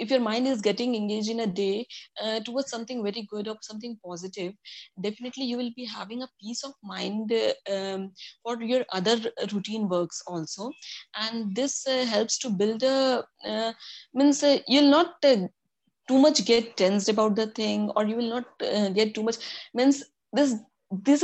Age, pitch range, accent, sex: 20-39, 210-255 Hz, native, female